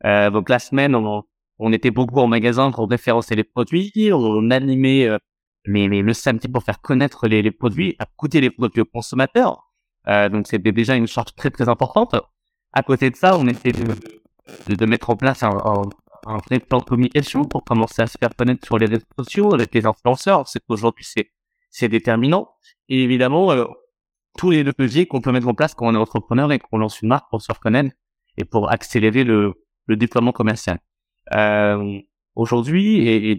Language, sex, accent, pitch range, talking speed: French, male, French, 110-135 Hz, 200 wpm